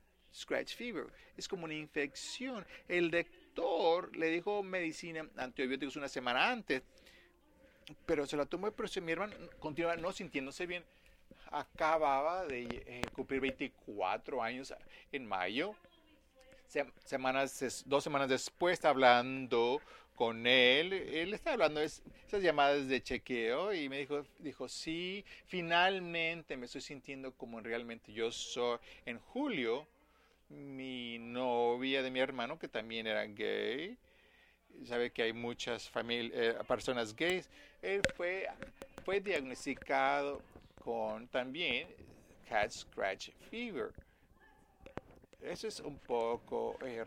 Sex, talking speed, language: male, 125 wpm, Spanish